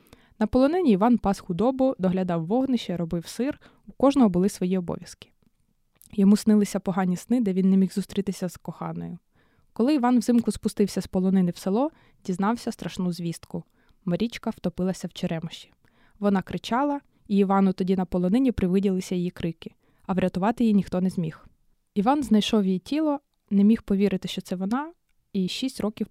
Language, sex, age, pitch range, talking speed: Ukrainian, female, 20-39, 185-230 Hz, 160 wpm